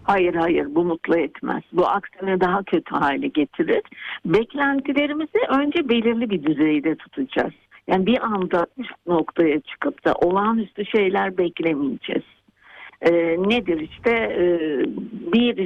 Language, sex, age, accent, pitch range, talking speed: Turkish, female, 60-79, native, 175-235 Hz, 120 wpm